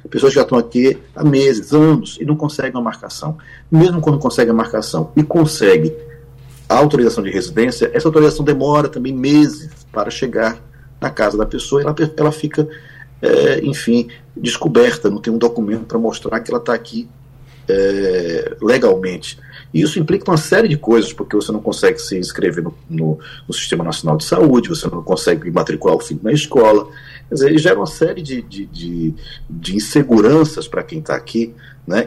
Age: 40-59